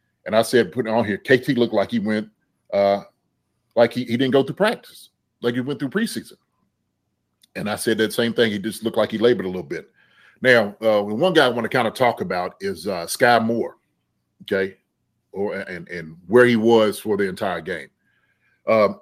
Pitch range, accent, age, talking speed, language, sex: 110-145 Hz, American, 30-49, 215 wpm, English, male